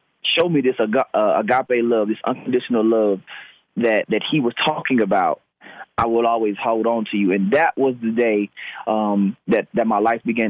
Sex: male